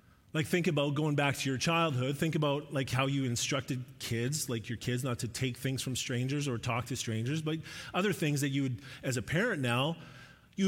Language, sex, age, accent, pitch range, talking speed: English, male, 30-49, American, 125-170 Hz, 220 wpm